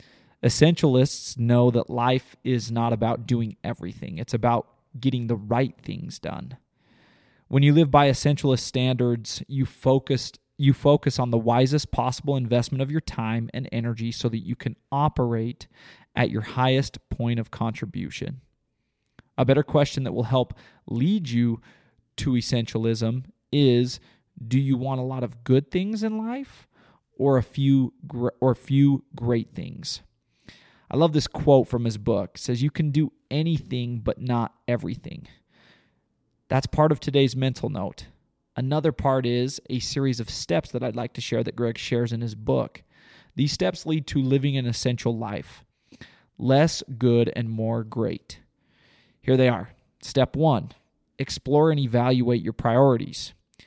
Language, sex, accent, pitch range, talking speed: English, male, American, 120-140 Hz, 155 wpm